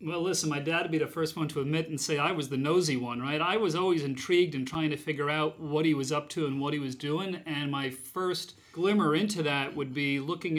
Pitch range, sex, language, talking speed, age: 140-160 Hz, male, English, 270 wpm, 40-59